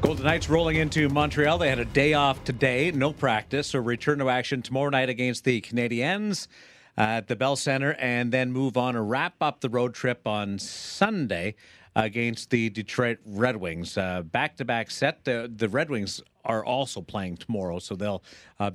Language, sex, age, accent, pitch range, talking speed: English, male, 50-69, American, 110-145 Hz, 180 wpm